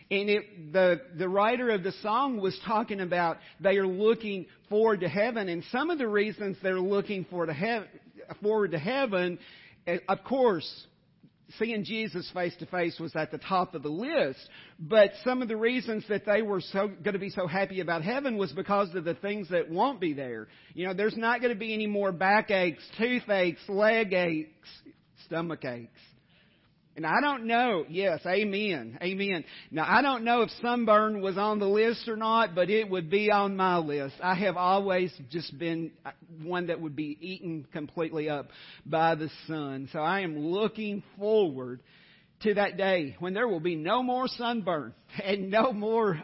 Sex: male